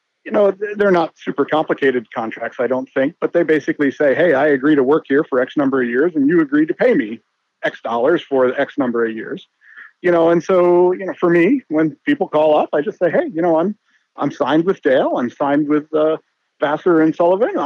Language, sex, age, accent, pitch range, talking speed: English, male, 50-69, American, 145-180 Hz, 230 wpm